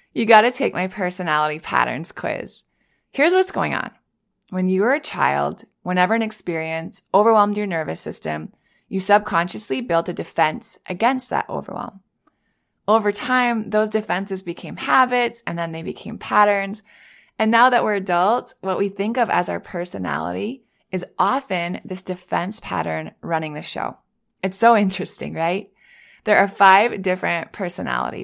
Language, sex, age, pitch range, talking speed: English, female, 20-39, 175-220 Hz, 155 wpm